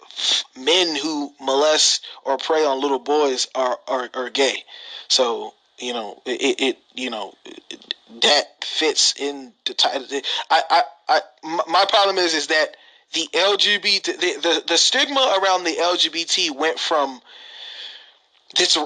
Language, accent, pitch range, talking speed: English, American, 155-210 Hz, 145 wpm